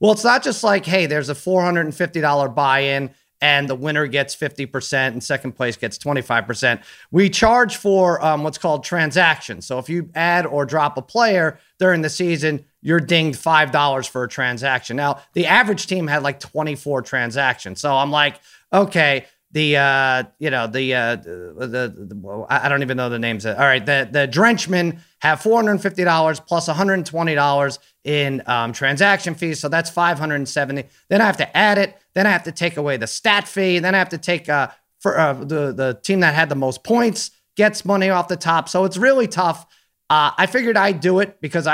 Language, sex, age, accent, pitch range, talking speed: English, male, 30-49, American, 130-175 Hz, 195 wpm